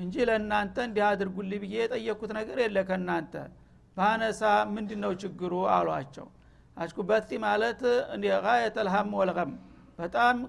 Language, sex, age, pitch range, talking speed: Amharic, male, 60-79, 190-215 Hz, 105 wpm